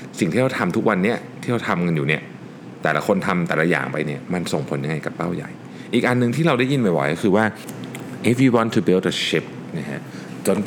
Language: Thai